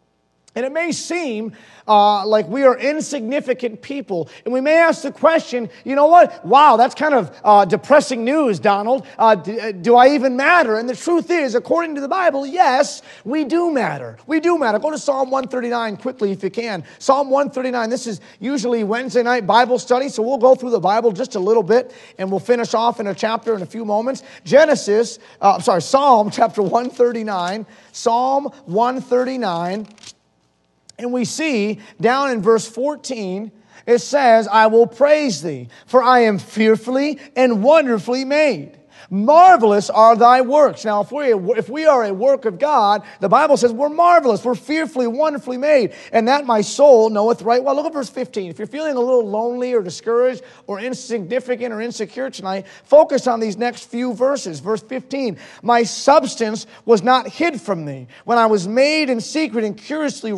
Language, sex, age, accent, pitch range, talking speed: English, male, 30-49, American, 215-275 Hz, 185 wpm